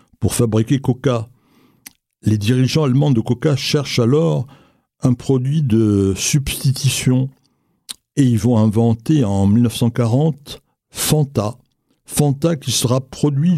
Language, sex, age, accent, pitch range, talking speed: French, male, 60-79, French, 110-140 Hz, 110 wpm